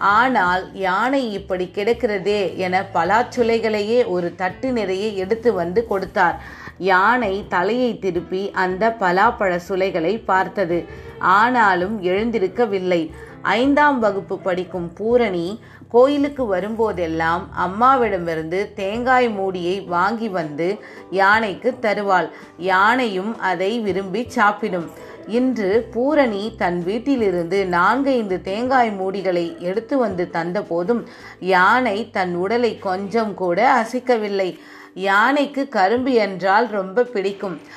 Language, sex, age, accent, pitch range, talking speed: Tamil, female, 30-49, native, 185-235 Hz, 95 wpm